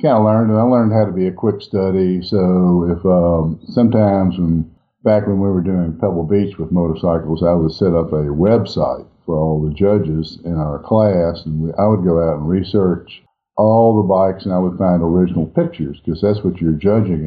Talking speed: 210 wpm